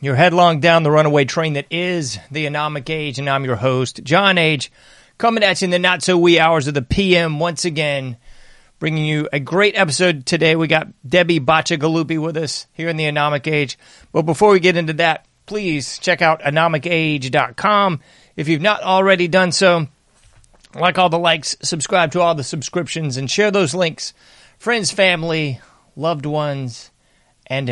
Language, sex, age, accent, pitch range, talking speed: English, male, 30-49, American, 145-180 Hz, 175 wpm